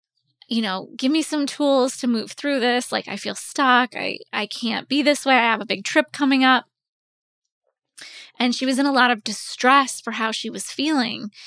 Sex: female